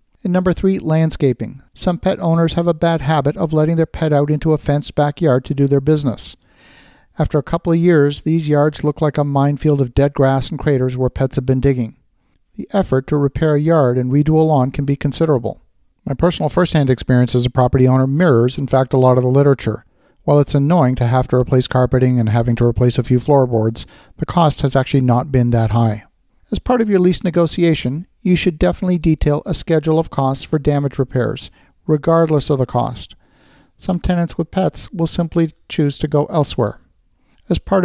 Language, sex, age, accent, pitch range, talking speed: English, male, 50-69, American, 130-165 Hz, 205 wpm